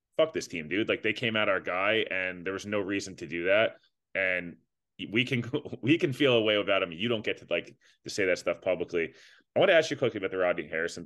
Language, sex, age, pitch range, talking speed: English, male, 20-39, 90-115 Hz, 260 wpm